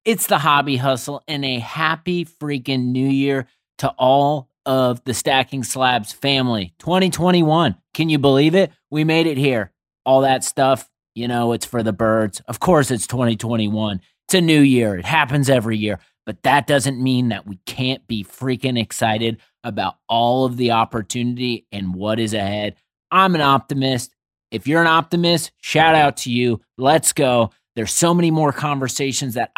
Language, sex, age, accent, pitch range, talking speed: English, male, 30-49, American, 120-145 Hz, 170 wpm